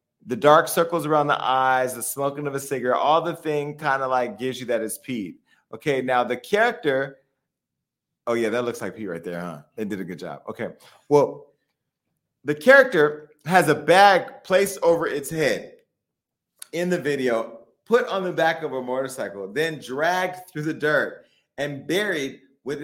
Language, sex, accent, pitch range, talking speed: English, male, American, 135-170 Hz, 180 wpm